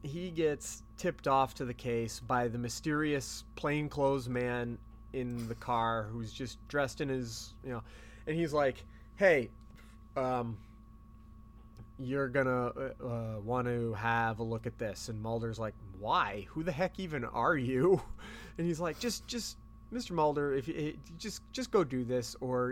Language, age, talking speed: English, 30-49, 165 wpm